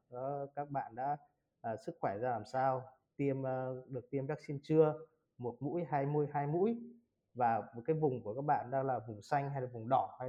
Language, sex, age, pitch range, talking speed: Vietnamese, male, 20-39, 120-140 Hz, 215 wpm